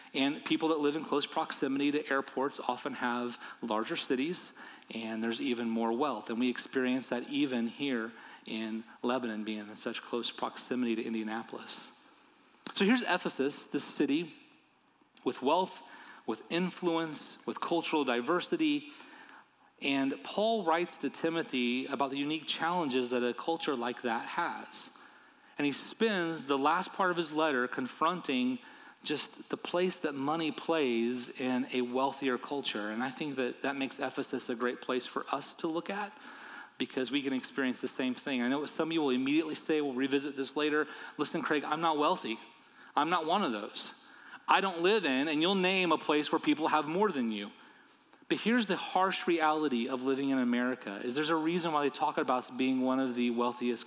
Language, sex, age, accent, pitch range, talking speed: English, male, 30-49, American, 125-170 Hz, 180 wpm